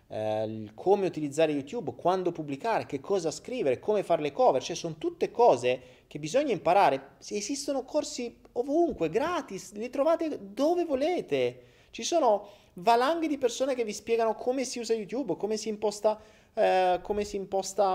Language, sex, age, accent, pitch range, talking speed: Italian, male, 30-49, native, 140-230 Hz, 155 wpm